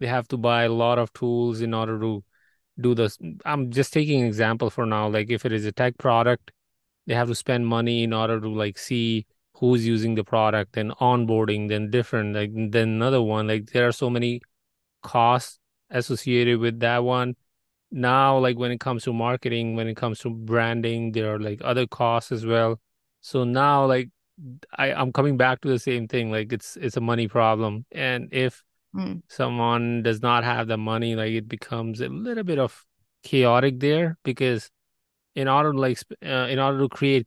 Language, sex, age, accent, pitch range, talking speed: English, male, 20-39, Indian, 115-130 Hz, 195 wpm